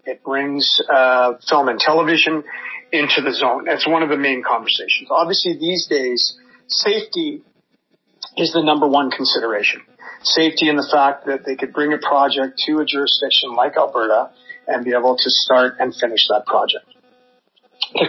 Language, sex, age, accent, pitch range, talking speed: English, male, 50-69, American, 135-165 Hz, 165 wpm